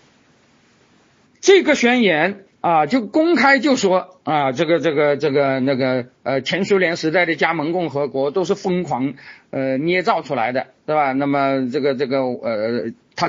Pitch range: 145-205 Hz